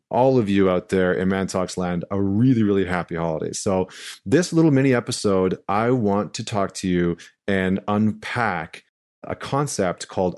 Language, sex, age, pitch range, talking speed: English, male, 30-49, 95-115 Hz, 170 wpm